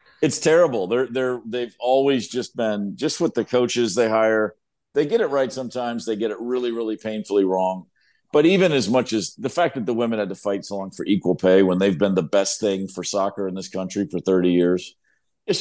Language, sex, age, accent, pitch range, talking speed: English, male, 50-69, American, 95-120 Hz, 240 wpm